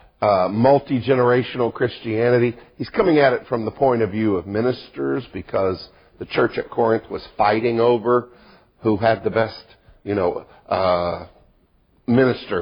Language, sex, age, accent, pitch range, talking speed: English, male, 50-69, American, 100-135 Hz, 145 wpm